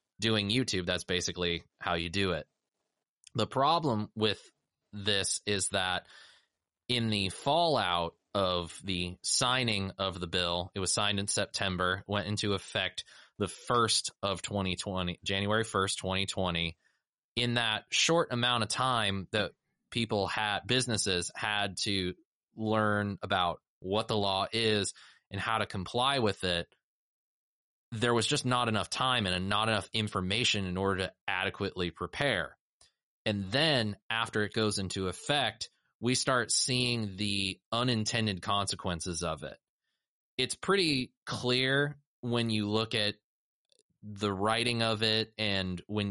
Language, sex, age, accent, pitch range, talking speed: English, male, 20-39, American, 95-115 Hz, 135 wpm